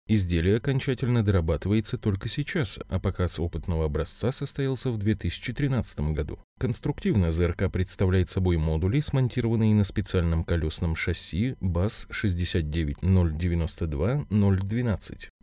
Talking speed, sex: 95 wpm, male